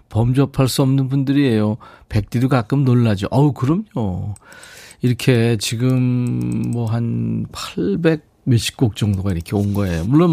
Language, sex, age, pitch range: Korean, male, 40-59, 105-150 Hz